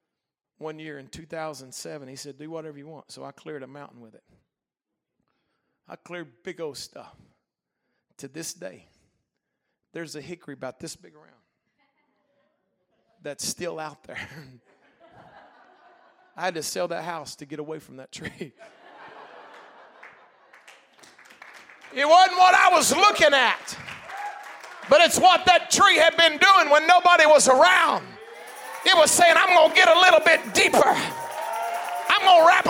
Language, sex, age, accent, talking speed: English, male, 40-59, American, 150 wpm